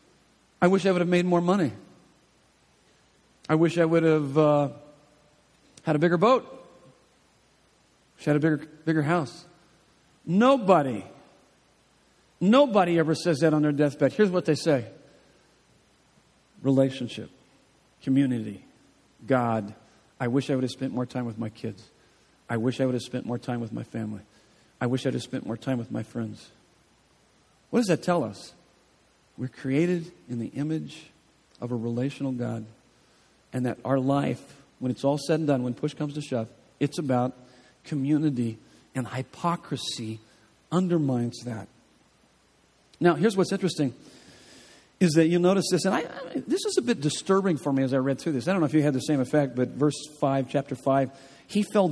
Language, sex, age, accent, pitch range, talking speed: English, male, 50-69, American, 125-170 Hz, 170 wpm